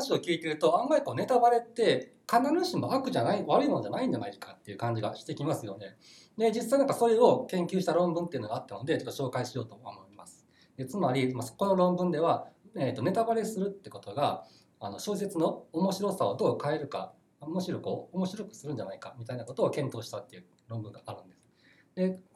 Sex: male